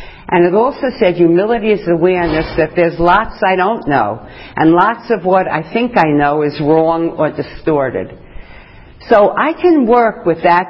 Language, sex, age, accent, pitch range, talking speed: English, female, 50-69, American, 130-180 Hz, 175 wpm